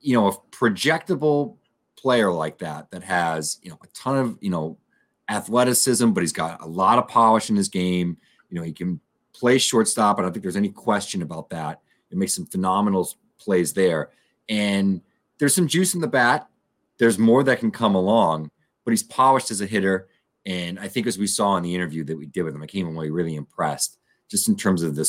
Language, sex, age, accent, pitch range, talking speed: English, male, 30-49, American, 85-115 Hz, 220 wpm